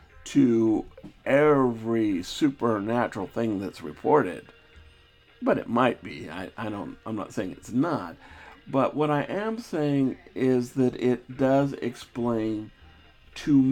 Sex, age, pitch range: male, 50-69, 110-140 Hz